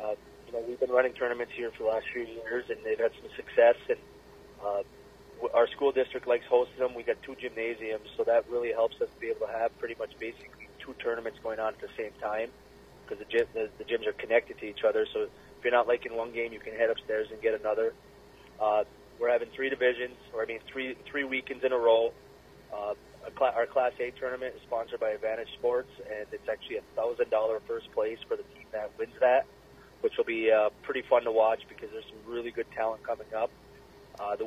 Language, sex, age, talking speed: English, male, 30-49, 225 wpm